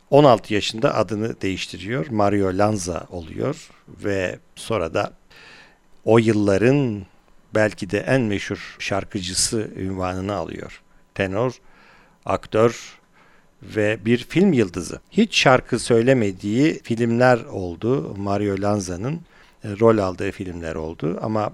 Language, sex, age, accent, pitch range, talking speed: Turkish, male, 50-69, native, 95-115 Hz, 105 wpm